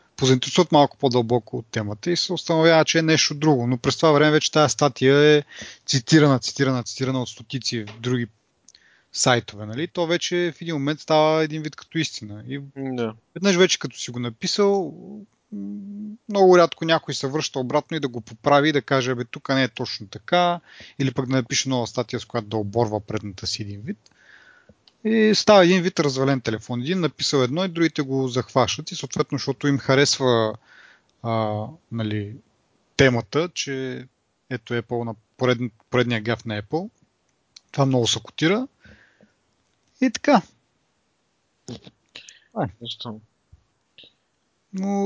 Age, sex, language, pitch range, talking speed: 30-49, male, Bulgarian, 120-170 Hz, 155 wpm